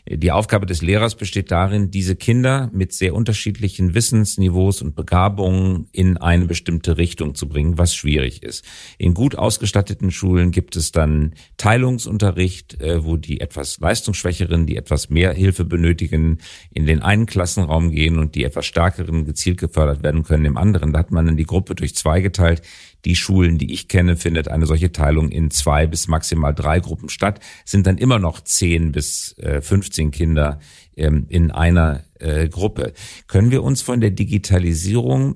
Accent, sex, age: German, male, 50-69